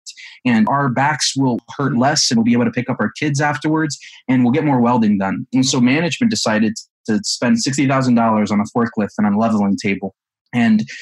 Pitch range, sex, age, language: 120-190 Hz, male, 20-39, English